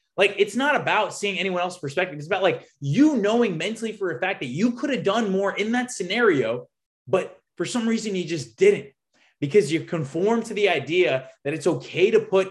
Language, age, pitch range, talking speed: English, 20-39, 150-205 Hz, 210 wpm